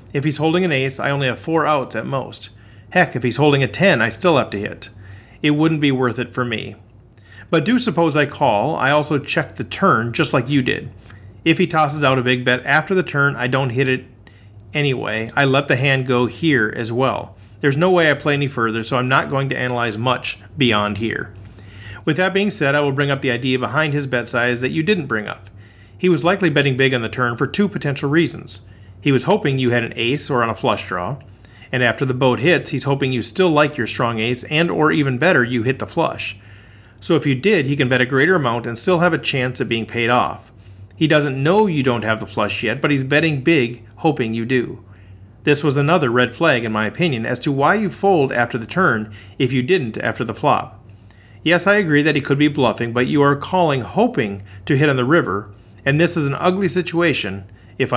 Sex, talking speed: male, 235 wpm